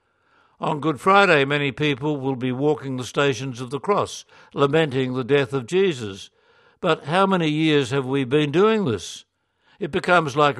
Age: 60-79